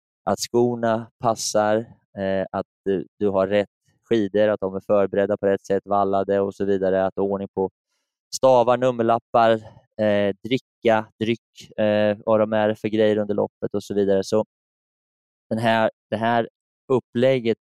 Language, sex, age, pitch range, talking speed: Swedish, male, 20-39, 95-110 Hz, 135 wpm